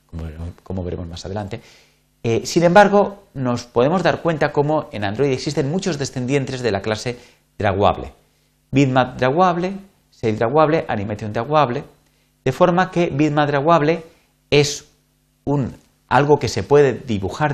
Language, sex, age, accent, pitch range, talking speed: Spanish, male, 40-59, Spanish, 100-150 Hz, 135 wpm